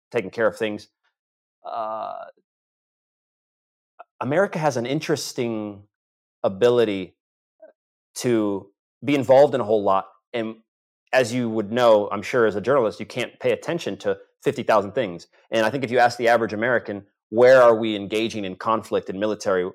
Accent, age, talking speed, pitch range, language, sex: American, 30-49, 165 wpm, 105-125 Hz, English, male